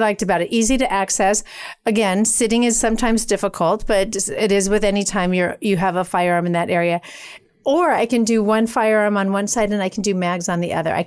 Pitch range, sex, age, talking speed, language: 195-230 Hz, female, 40-59, 235 wpm, English